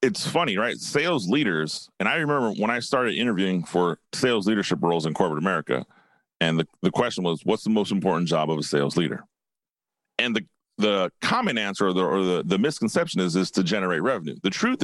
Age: 40-59